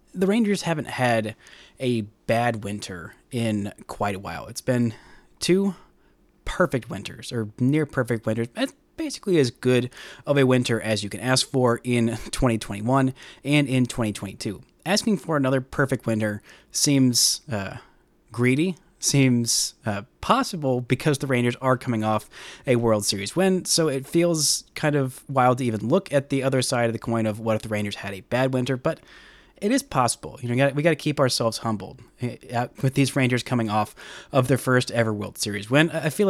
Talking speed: 180 wpm